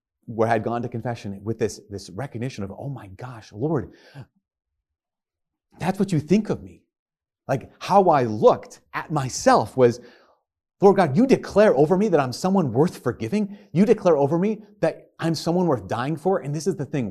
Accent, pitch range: American, 110-155 Hz